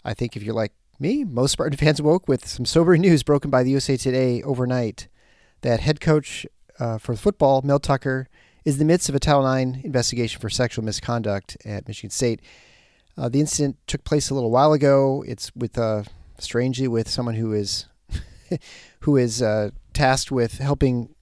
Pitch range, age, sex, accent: 115-140 Hz, 30-49, male, American